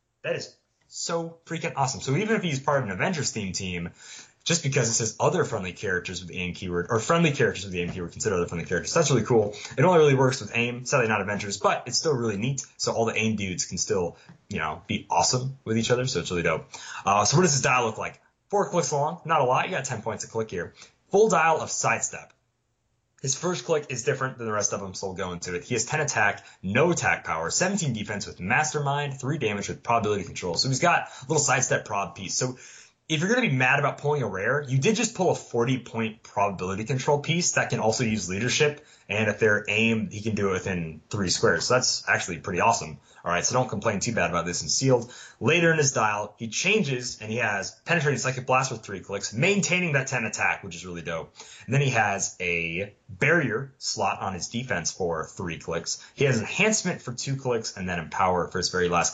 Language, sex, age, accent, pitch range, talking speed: English, male, 20-39, American, 100-140 Hz, 240 wpm